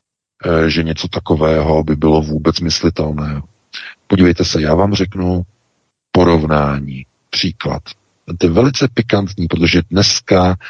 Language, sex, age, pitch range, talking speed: Czech, male, 50-69, 80-110 Hz, 110 wpm